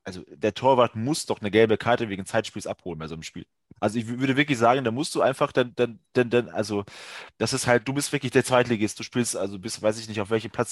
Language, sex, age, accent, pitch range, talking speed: German, male, 20-39, German, 100-125 Hz, 275 wpm